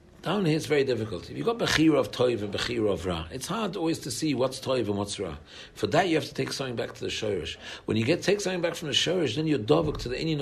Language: English